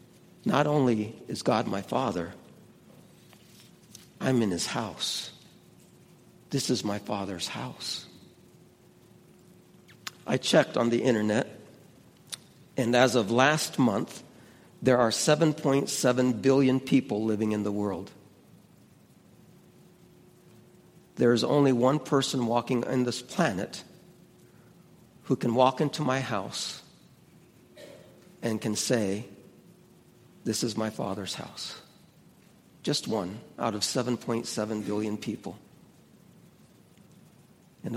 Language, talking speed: English, 105 wpm